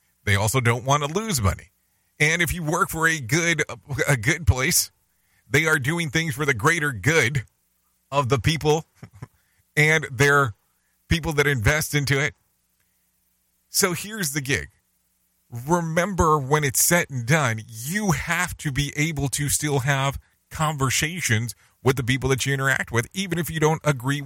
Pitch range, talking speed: 110-150 Hz, 165 wpm